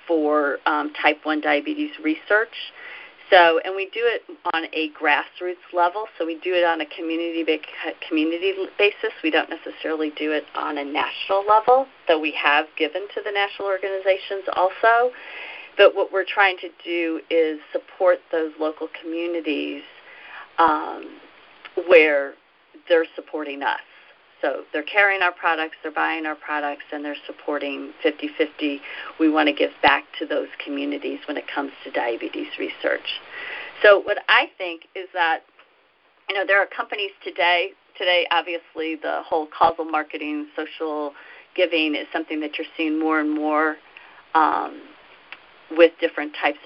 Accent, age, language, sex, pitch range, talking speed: American, 40-59, English, female, 150-190 Hz, 150 wpm